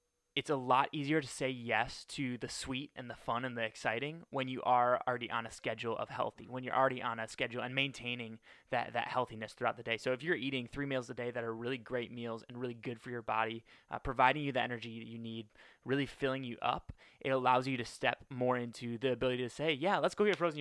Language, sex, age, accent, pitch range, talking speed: English, male, 20-39, American, 120-135 Hz, 250 wpm